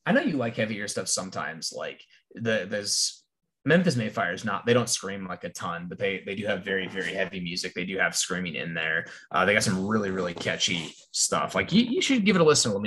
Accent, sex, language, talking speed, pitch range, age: American, male, English, 240 wpm, 90-120 Hz, 20-39